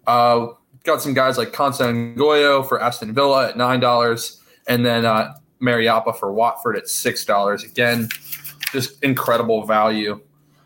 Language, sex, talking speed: English, male, 140 wpm